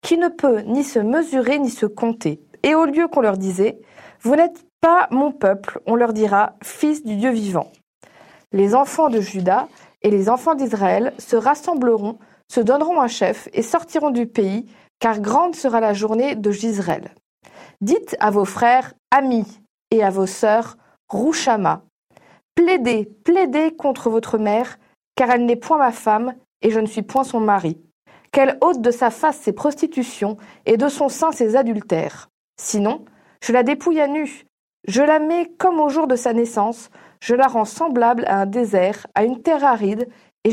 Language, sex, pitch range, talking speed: French, female, 215-280 Hz, 190 wpm